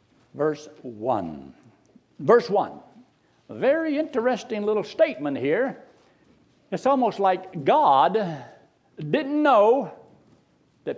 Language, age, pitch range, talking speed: English, 60-79, 155-225 Hz, 95 wpm